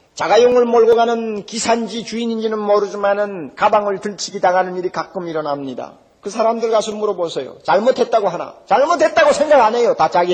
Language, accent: Korean, native